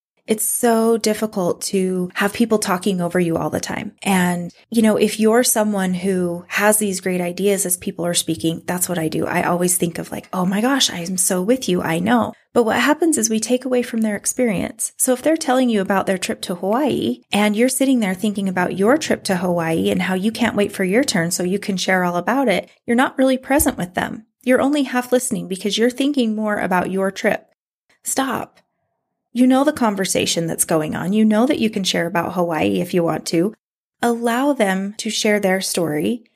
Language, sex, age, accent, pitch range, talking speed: English, female, 30-49, American, 185-245 Hz, 220 wpm